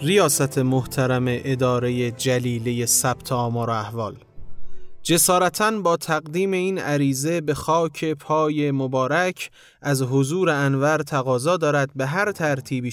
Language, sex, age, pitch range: Persian, male, 30-49, 130-160 Hz